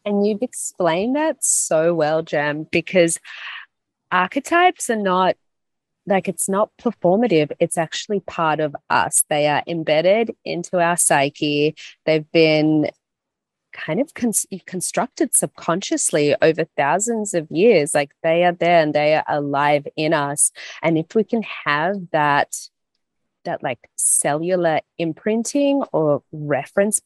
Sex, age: female, 30-49